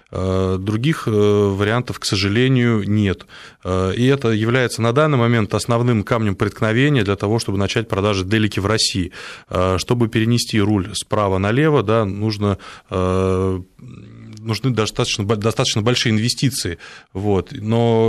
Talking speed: 115 wpm